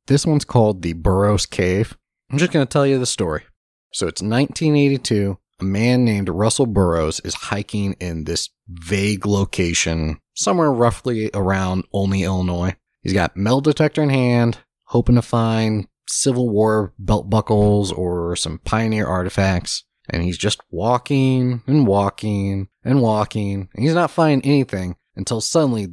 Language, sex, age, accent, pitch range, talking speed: English, male, 30-49, American, 95-125 Hz, 150 wpm